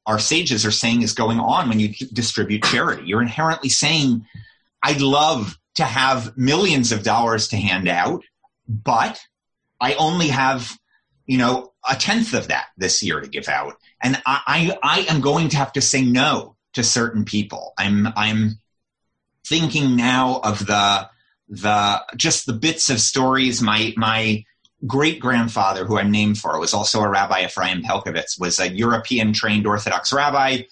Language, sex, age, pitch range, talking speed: English, male, 30-49, 105-130 Hz, 160 wpm